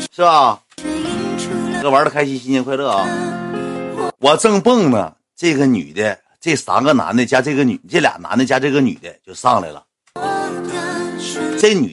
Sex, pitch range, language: male, 145-220 Hz, Chinese